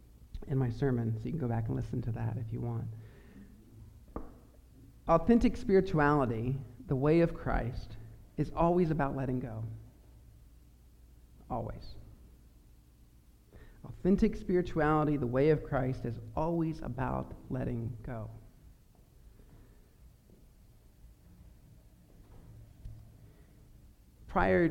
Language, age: English, 50-69